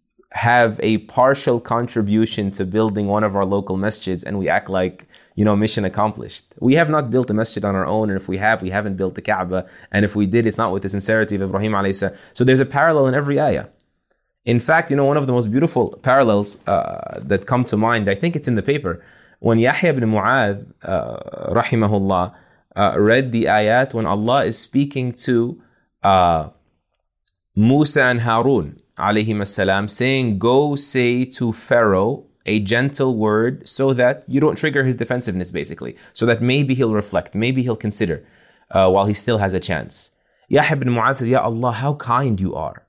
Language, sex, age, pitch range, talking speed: English, male, 20-39, 105-130 Hz, 190 wpm